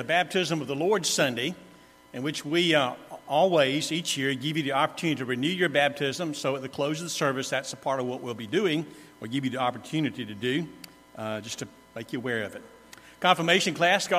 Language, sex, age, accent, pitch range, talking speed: English, male, 50-69, American, 135-170 Hz, 230 wpm